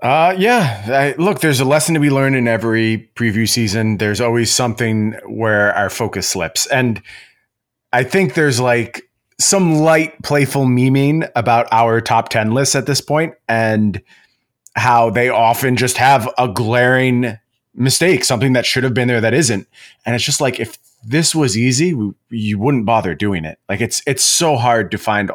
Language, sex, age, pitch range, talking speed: English, male, 30-49, 110-135 Hz, 180 wpm